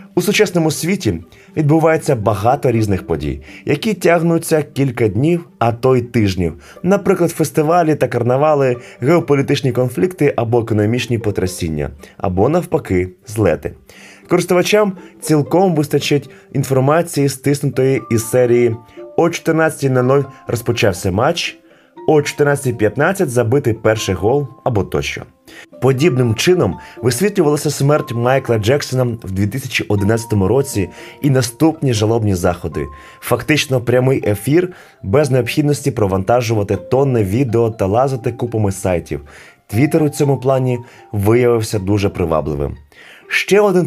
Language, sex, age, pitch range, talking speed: Ukrainian, male, 20-39, 110-150 Hz, 110 wpm